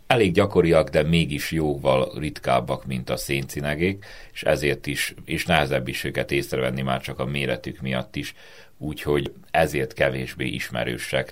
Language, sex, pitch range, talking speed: Hungarian, male, 65-80 Hz, 145 wpm